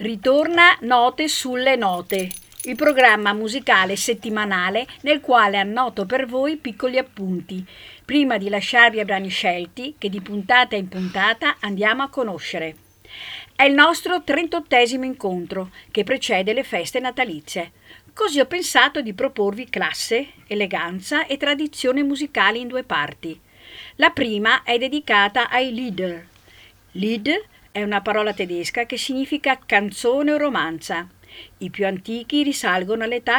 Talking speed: 130 wpm